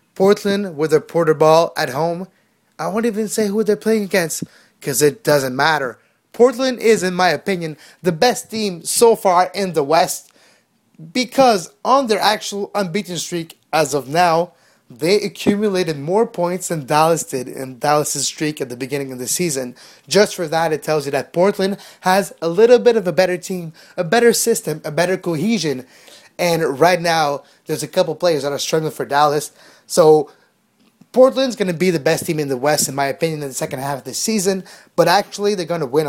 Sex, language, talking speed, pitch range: male, English, 195 wpm, 150-205 Hz